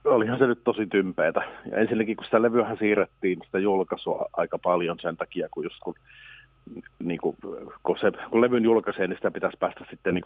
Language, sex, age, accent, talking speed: Finnish, male, 40-59, native, 170 wpm